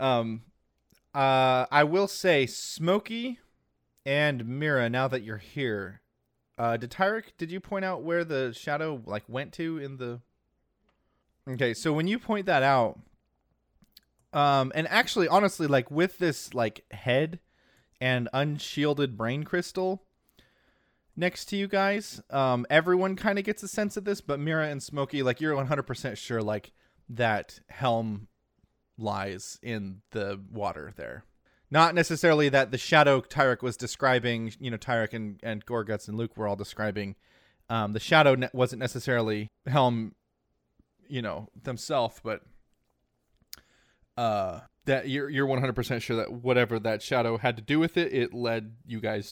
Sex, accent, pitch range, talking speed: male, American, 115-155 Hz, 150 wpm